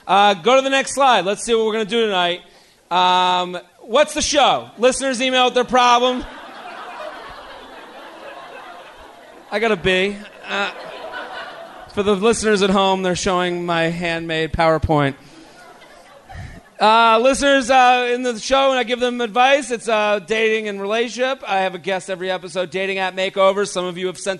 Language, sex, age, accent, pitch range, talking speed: English, male, 40-59, American, 185-235 Hz, 165 wpm